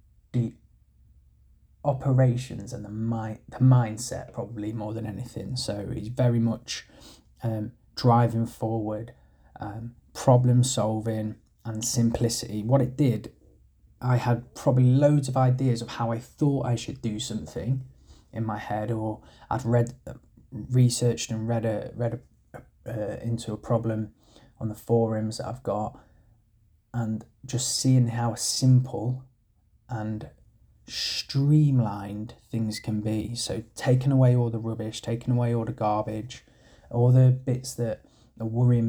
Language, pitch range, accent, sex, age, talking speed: English, 110-125 Hz, British, male, 20-39, 135 wpm